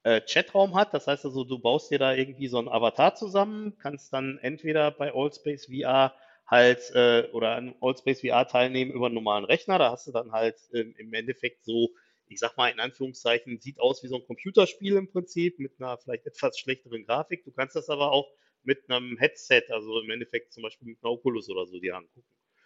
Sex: male